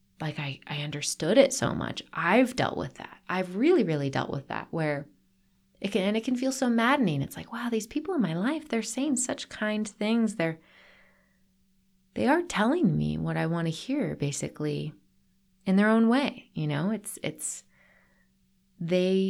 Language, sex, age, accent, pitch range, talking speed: English, female, 30-49, American, 160-215 Hz, 185 wpm